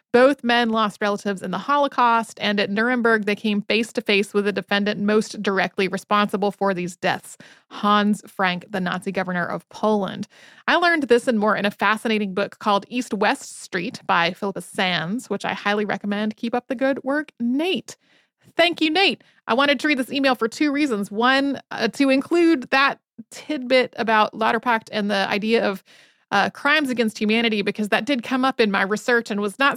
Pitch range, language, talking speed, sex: 200-245 Hz, English, 185 wpm, female